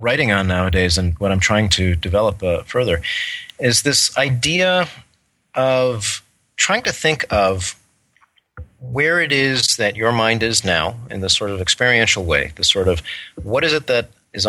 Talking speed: 170 wpm